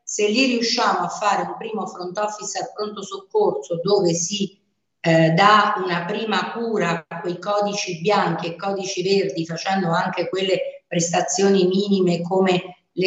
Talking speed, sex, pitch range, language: 150 wpm, female, 175-210 Hz, Italian